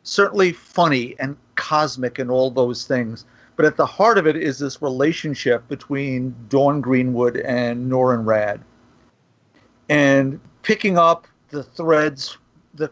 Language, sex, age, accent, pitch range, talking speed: English, male, 50-69, American, 130-165 Hz, 135 wpm